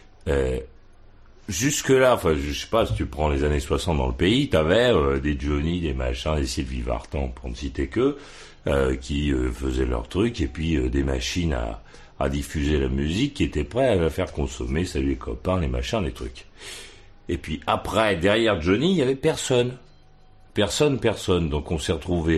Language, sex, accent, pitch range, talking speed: French, male, French, 75-110 Hz, 200 wpm